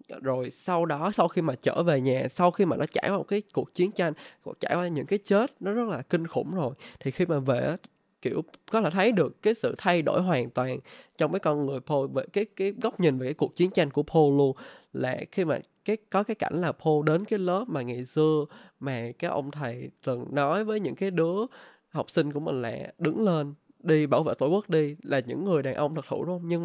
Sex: male